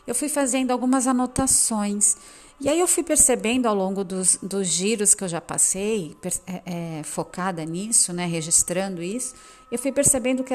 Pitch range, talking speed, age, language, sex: 190-255 Hz, 160 wpm, 40-59, Portuguese, female